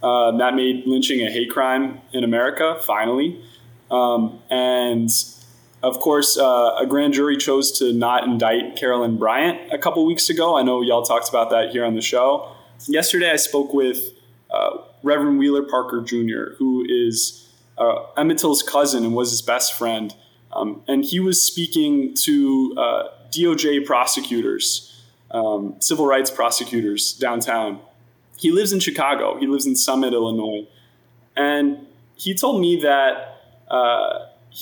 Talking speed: 150 wpm